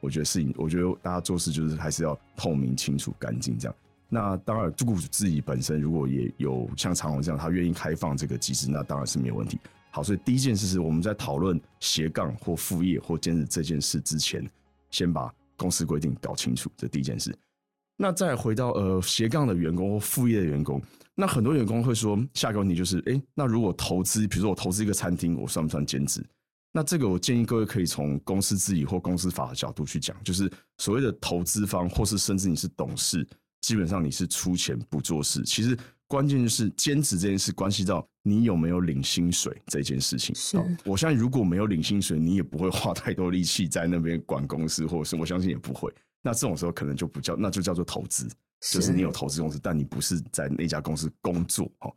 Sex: male